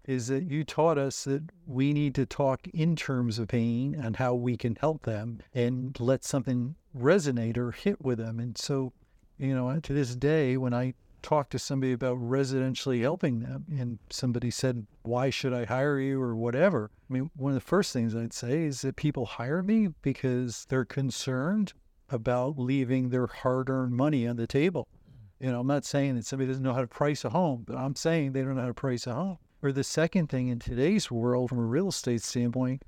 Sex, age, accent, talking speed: male, 50-69, American, 210 wpm